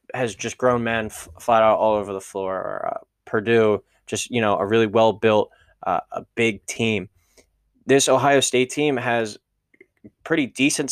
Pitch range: 110-125 Hz